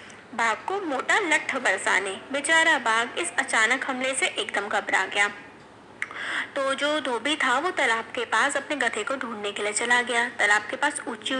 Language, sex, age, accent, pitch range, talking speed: Hindi, female, 20-39, native, 225-290 Hz, 175 wpm